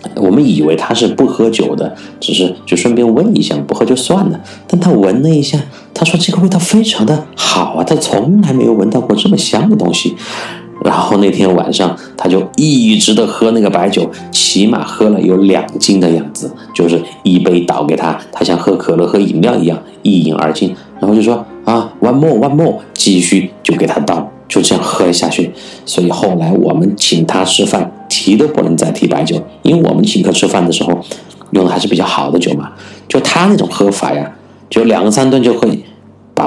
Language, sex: Chinese, male